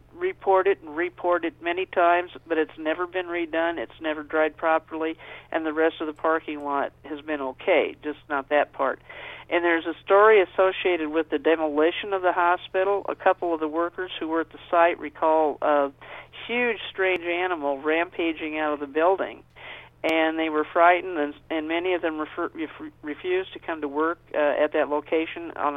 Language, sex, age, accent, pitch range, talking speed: English, male, 50-69, American, 155-175 Hz, 185 wpm